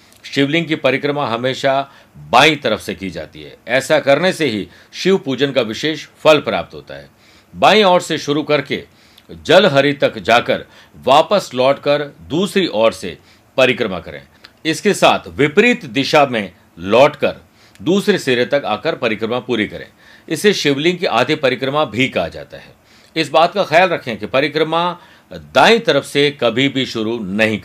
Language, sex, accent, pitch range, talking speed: Hindi, male, native, 120-160 Hz, 160 wpm